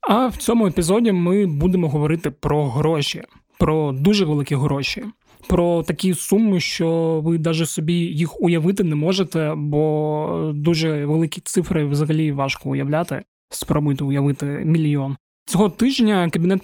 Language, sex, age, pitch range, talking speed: Ukrainian, male, 20-39, 150-175 Hz, 135 wpm